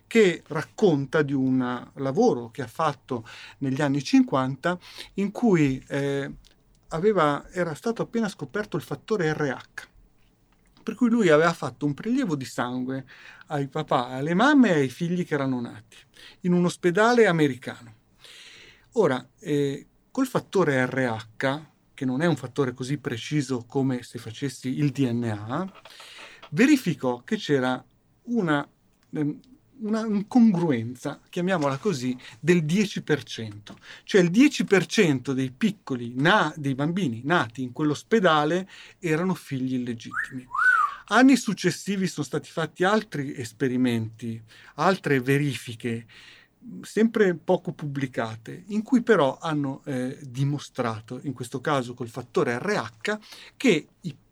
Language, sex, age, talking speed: Italian, male, 40-59, 120 wpm